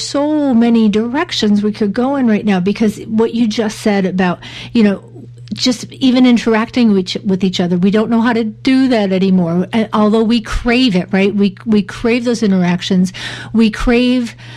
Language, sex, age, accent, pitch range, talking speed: English, female, 50-69, American, 195-240 Hz, 190 wpm